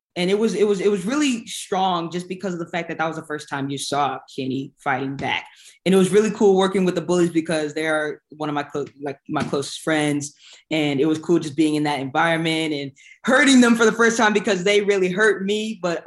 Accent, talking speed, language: American, 250 wpm, English